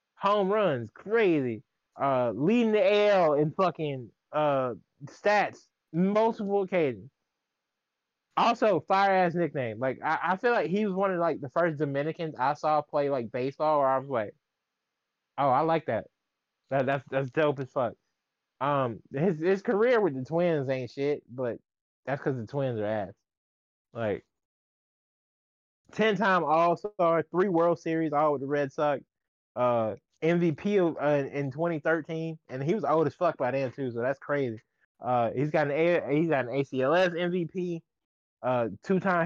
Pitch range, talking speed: 135-175 Hz, 165 wpm